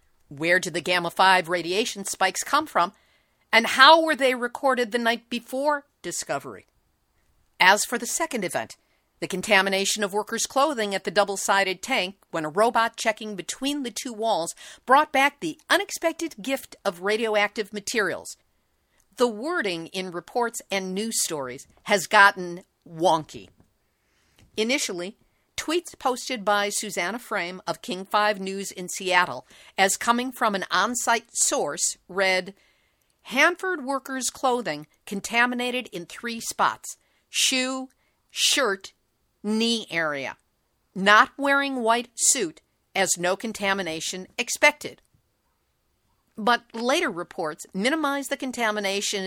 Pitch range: 190-255 Hz